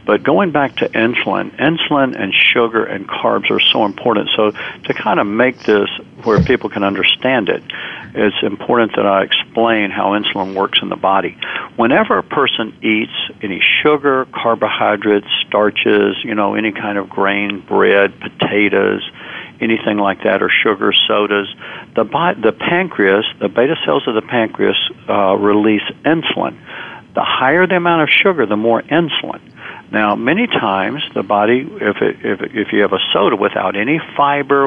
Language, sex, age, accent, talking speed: English, male, 60-79, American, 165 wpm